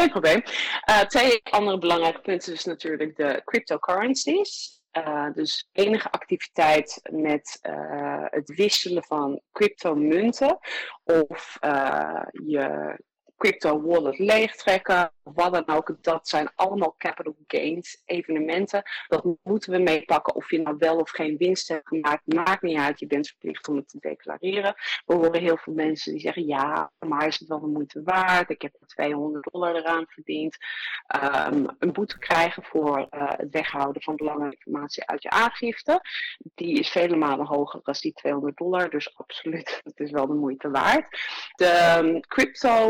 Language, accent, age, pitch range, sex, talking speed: Dutch, Dutch, 30-49, 150-185 Hz, female, 155 wpm